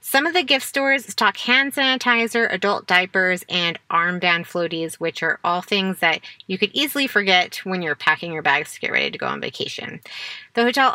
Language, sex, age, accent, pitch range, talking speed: English, female, 30-49, American, 185-245 Hz, 195 wpm